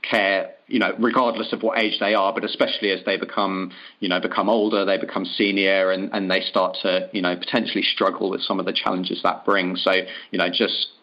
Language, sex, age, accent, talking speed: English, male, 30-49, British, 225 wpm